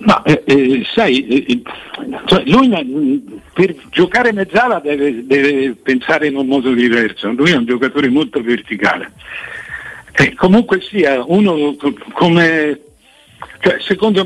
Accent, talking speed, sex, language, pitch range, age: native, 125 wpm, male, Italian, 120-185 Hz, 60-79